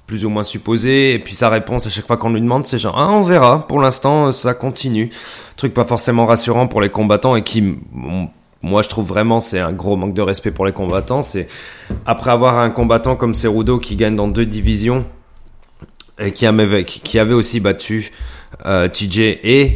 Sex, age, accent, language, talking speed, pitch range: male, 30-49, French, French, 195 wpm, 100-125 Hz